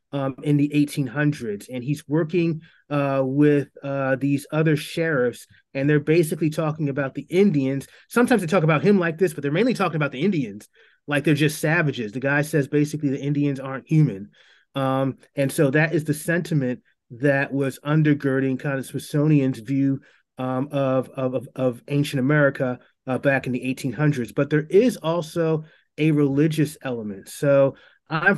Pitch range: 140-160 Hz